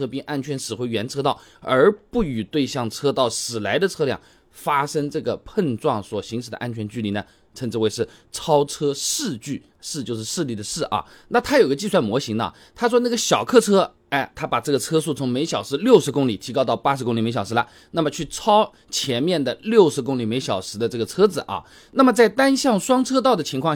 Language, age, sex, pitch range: Chinese, 20-39, male, 120-185 Hz